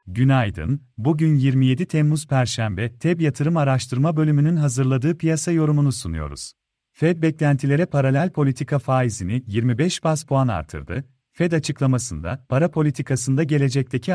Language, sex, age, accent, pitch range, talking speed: Turkish, male, 40-59, native, 125-155 Hz, 115 wpm